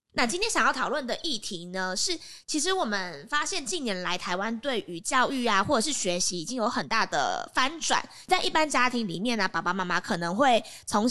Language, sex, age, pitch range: Chinese, female, 20-39, 190-265 Hz